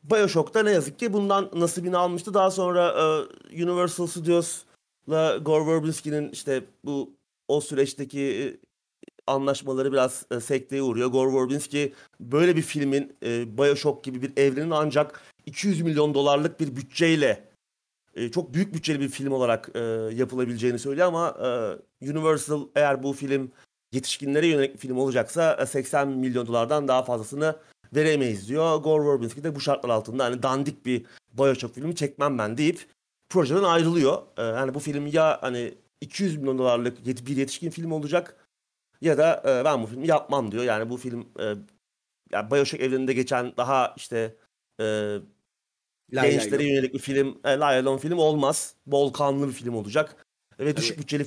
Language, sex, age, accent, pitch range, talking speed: Turkish, male, 40-59, native, 130-160 Hz, 145 wpm